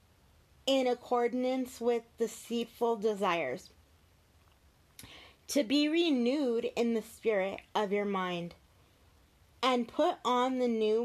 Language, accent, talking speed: English, American, 105 wpm